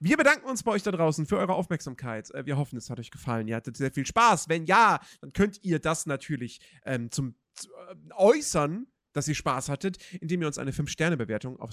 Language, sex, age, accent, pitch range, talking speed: German, male, 40-59, German, 150-210 Hz, 225 wpm